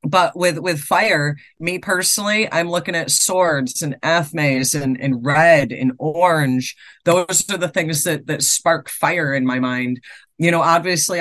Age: 40-59